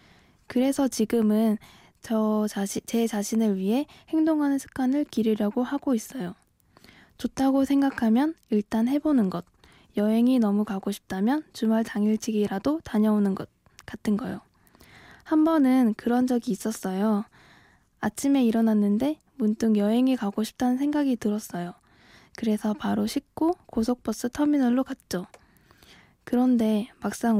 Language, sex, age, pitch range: Korean, female, 10-29, 210-270 Hz